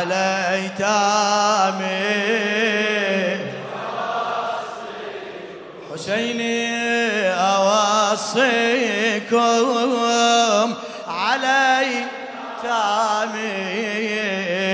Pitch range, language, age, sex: 155-210 Hz, Arabic, 20-39, male